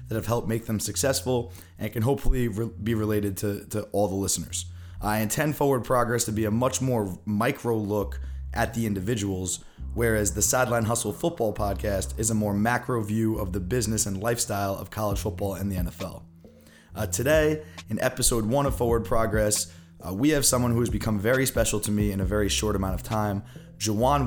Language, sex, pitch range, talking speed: English, male, 100-115 Hz, 195 wpm